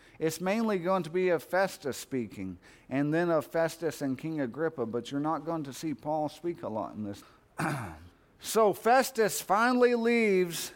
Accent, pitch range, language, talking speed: American, 150-195 Hz, English, 175 wpm